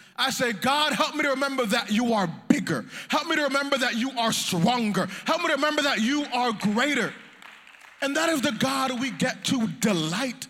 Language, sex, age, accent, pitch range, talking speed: English, male, 20-39, American, 205-260 Hz, 205 wpm